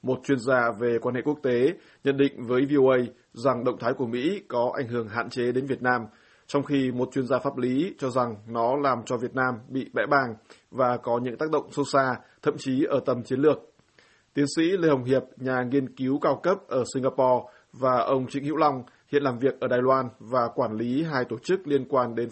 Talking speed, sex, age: 235 wpm, male, 20-39